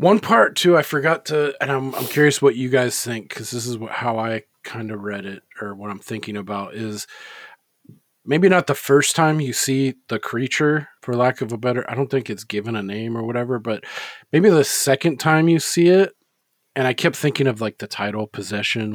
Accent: American